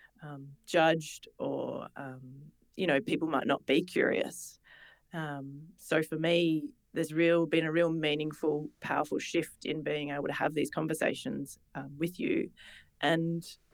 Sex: female